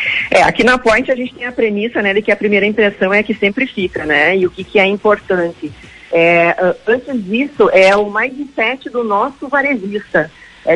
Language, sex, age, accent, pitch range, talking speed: Portuguese, female, 40-59, Brazilian, 190-225 Hz, 205 wpm